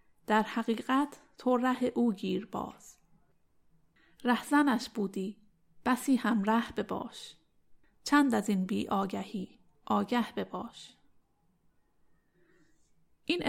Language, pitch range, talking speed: Persian, 205-250 Hz, 100 wpm